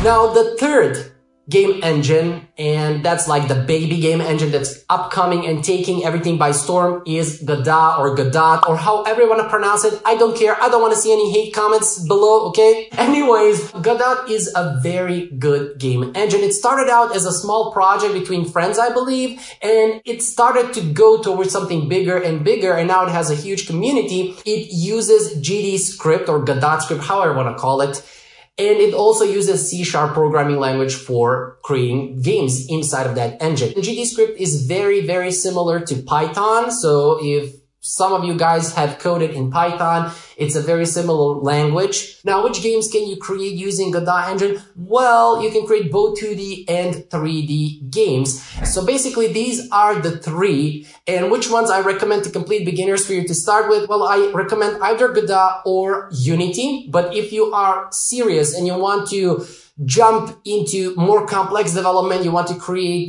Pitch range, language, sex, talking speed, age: 155-210 Hz, English, male, 180 wpm, 20-39